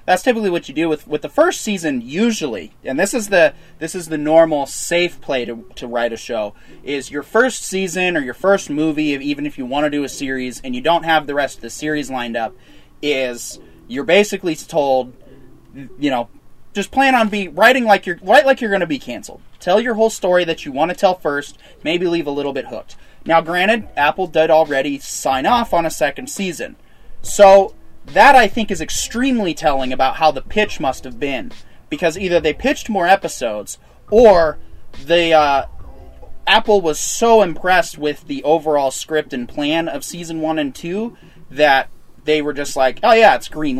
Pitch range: 145-210 Hz